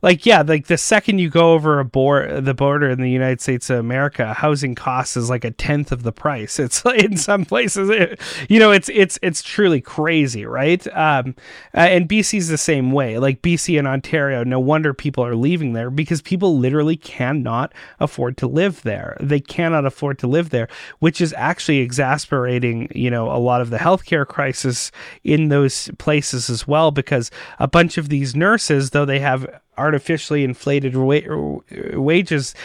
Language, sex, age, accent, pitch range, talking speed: English, male, 30-49, American, 135-175 Hz, 180 wpm